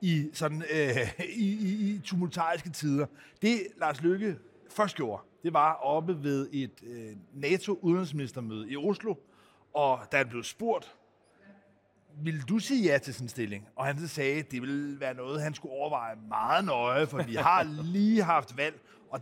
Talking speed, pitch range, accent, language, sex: 165 wpm, 135-185 Hz, native, Danish, male